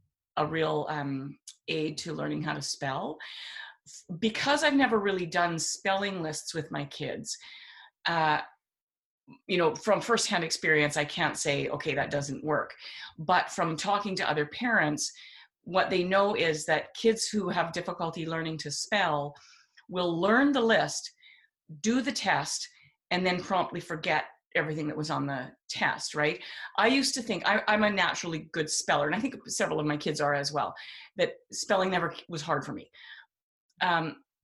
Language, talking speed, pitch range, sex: English, 165 wpm, 155-200 Hz, female